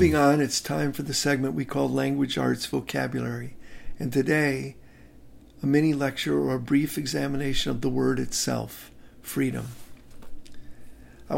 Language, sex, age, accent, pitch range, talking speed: English, male, 50-69, American, 125-145 Hz, 140 wpm